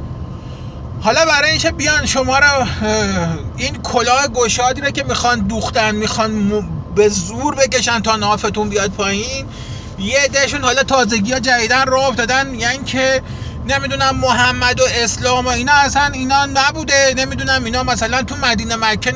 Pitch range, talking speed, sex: 210-275 Hz, 145 wpm, male